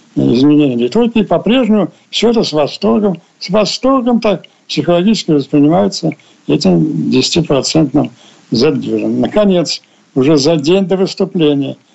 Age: 60-79